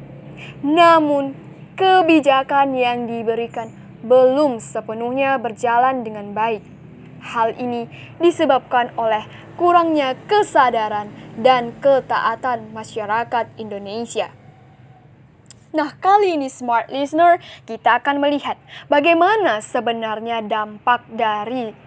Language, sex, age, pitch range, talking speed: English, female, 10-29, 225-290 Hz, 85 wpm